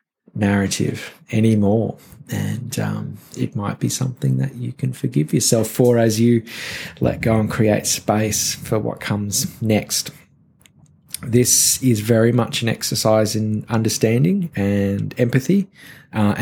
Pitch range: 105-125 Hz